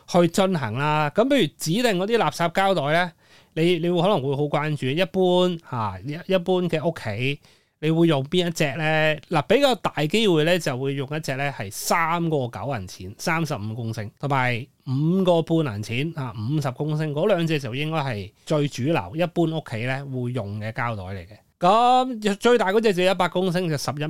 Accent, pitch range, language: native, 125-170 Hz, Chinese